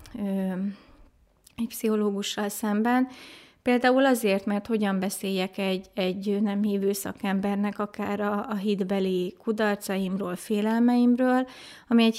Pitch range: 190-220 Hz